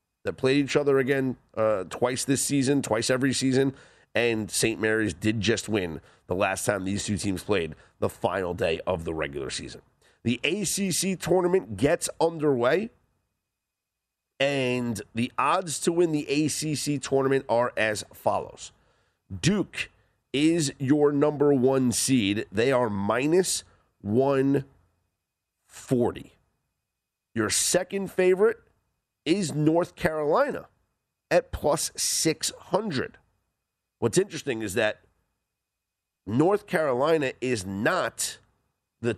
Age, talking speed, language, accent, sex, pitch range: 40-59, 115 wpm, English, American, male, 110-155 Hz